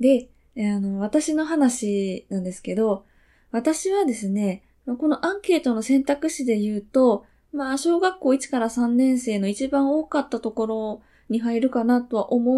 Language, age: Japanese, 20-39